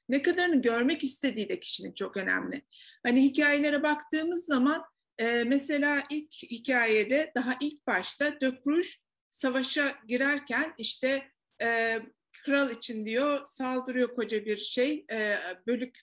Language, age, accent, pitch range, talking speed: Turkish, 50-69, native, 230-295 Hz, 110 wpm